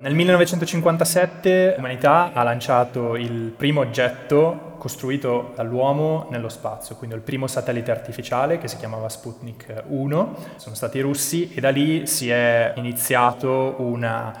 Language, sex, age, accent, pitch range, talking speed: Italian, male, 20-39, native, 115-145 Hz, 140 wpm